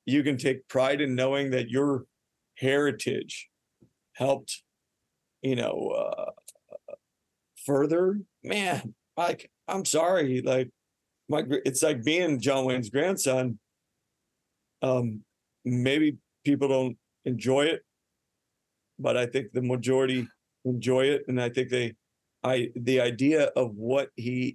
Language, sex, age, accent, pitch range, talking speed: English, male, 50-69, American, 125-145 Hz, 115 wpm